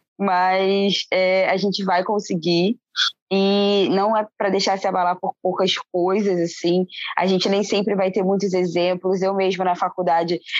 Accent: Brazilian